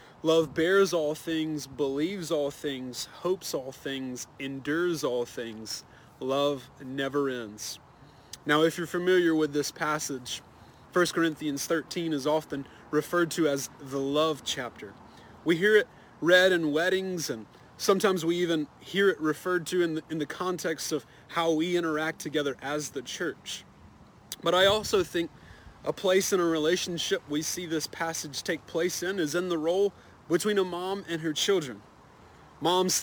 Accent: American